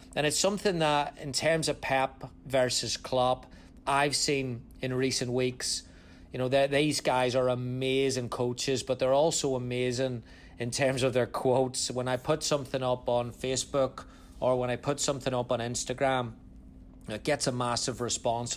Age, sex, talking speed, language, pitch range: 30-49, male, 165 wpm, English, 120-135 Hz